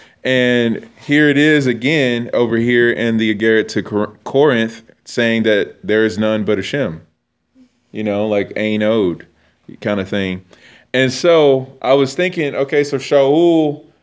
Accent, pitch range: American, 105-135 Hz